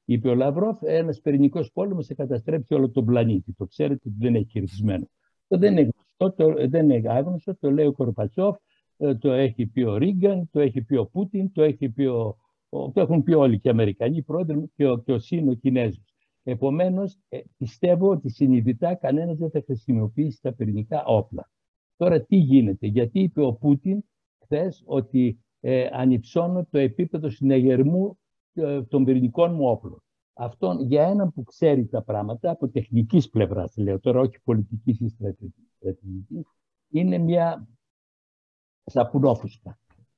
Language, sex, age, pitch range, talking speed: Greek, male, 60-79, 115-160 Hz, 150 wpm